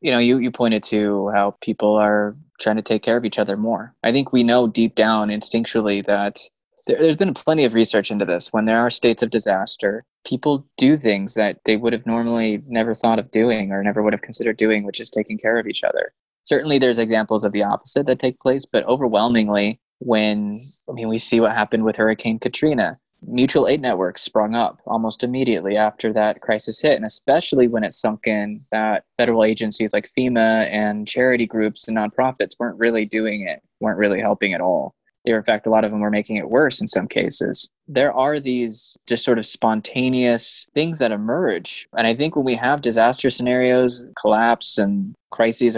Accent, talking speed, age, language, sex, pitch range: American, 205 wpm, 20-39, English, male, 110-125 Hz